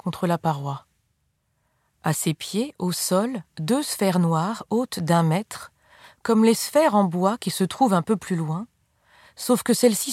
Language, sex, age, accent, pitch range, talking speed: French, female, 30-49, French, 175-225 Hz, 170 wpm